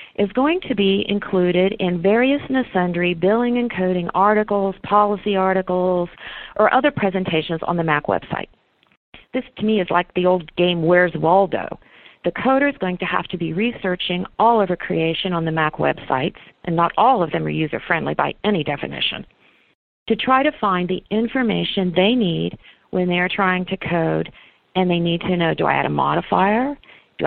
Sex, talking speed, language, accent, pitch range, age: female, 185 wpm, English, American, 170-215 Hz, 40-59